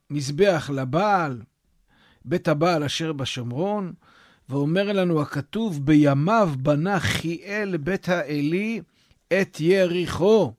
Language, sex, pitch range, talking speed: Hebrew, male, 145-180 Hz, 90 wpm